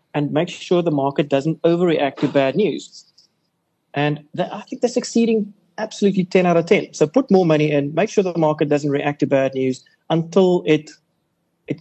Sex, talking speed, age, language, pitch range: male, 195 wpm, 30-49, English, 150-190 Hz